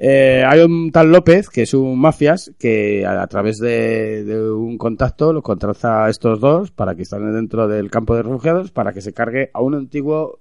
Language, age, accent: Spanish, 30-49, Spanish